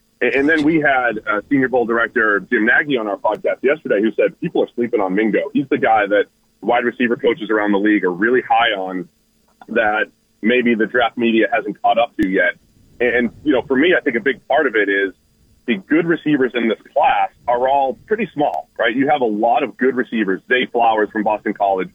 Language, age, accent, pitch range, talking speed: English, 30-49, American, 105-130 Hz, 220 wpm